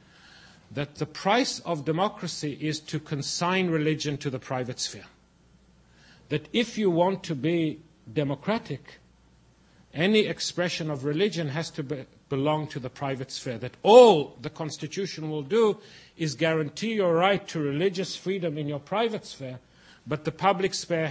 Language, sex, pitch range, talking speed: English, male, 130-180 Hz, 150 wpm